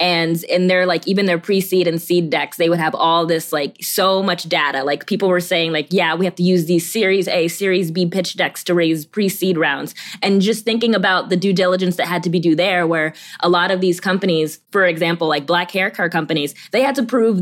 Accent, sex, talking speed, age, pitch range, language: American, female, 240 wpm, 20-39, 165-195 Hz, English